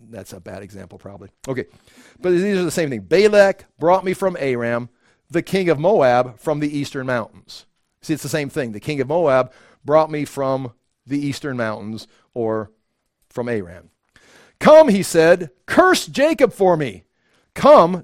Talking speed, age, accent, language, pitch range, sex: 170 wpm, 50-69, American, English, 140-205 Hz, male